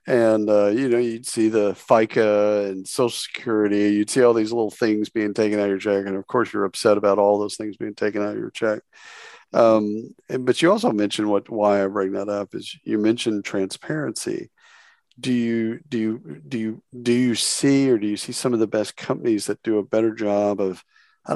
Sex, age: male, 50-69